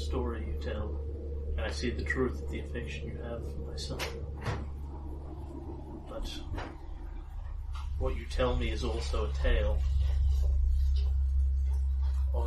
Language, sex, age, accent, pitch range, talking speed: English, male, 30-49, American, 65-85 Hz, 120 wpm